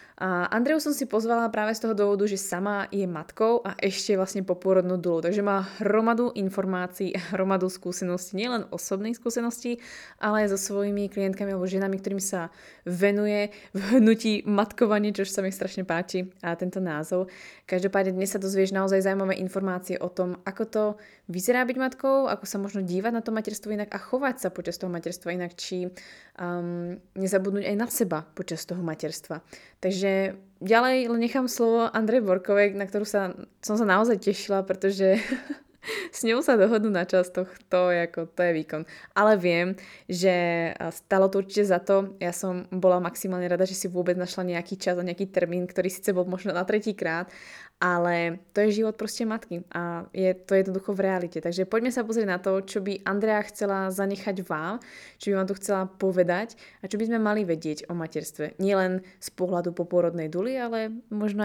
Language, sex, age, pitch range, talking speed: Slovak, female, 20-39, 180-210 Hz, 185 wpm